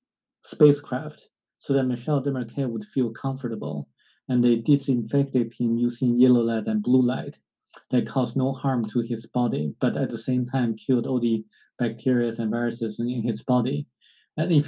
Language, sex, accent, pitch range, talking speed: English, male, Japanese, 115-135 Hz, 170 wpm